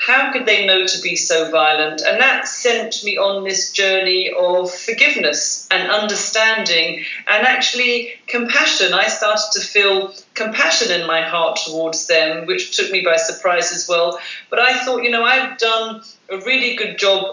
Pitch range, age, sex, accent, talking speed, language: 175-225 Hz, 40-59, female, British, 175 wpm, English